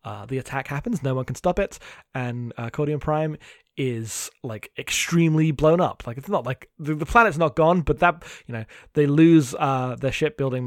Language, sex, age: English, male, 20-39